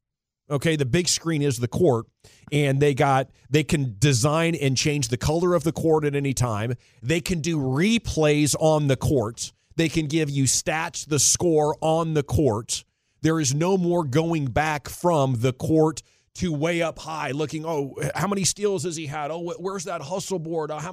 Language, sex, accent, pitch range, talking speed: English, male, American, 140-175 Hz, 200 wpm